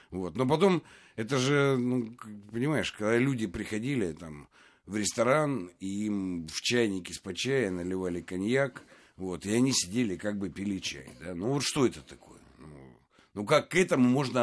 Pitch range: 105-150 Hz